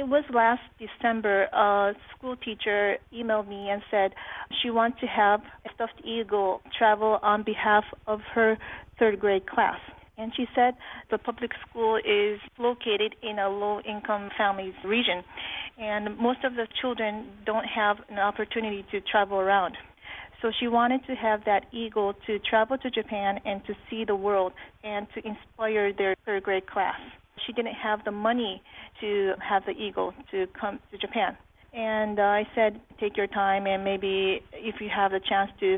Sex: female